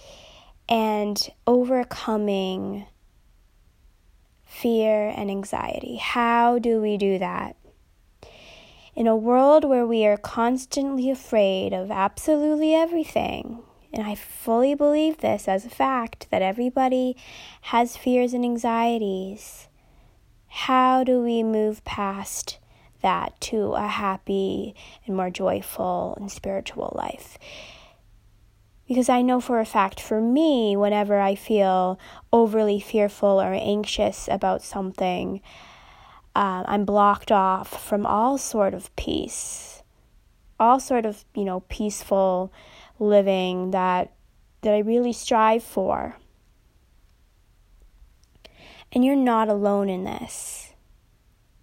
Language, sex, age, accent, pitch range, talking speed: English, female, 20-39, American, 195-245 Hz, 110 wpm